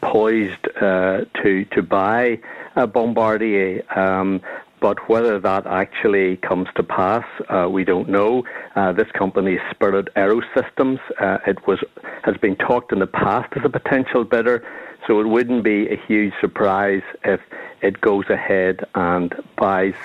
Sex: male